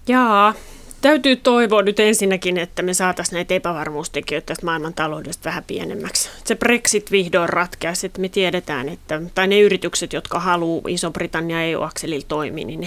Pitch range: 160-200 Hz